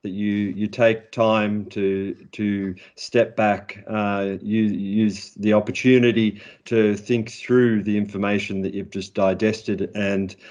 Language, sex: English, male